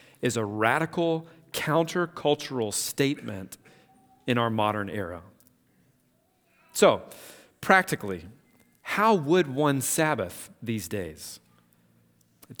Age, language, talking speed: 40-59, English, 85 wpm